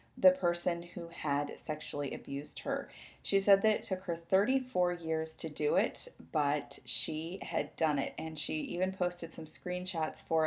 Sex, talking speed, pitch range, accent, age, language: female, 170 wpm, 155-195 Hz, American, 30-49, English